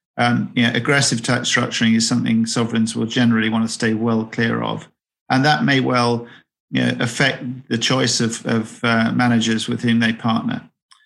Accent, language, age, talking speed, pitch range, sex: British, English, 40-59, 190 wpm, 115-125 Hz, male